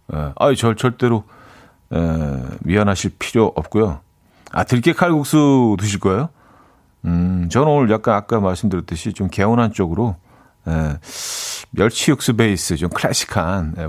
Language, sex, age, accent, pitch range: Korean, male, 40-59, native, 90-130 Hz